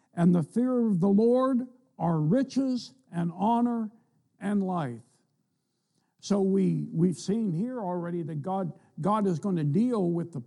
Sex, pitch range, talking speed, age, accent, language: male, 165-205 Hz, 155 wpm, 60-79, American, English